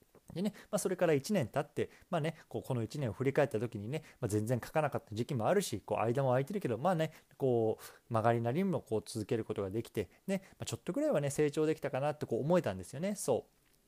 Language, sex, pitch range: Japanese, male, 110-175 Hz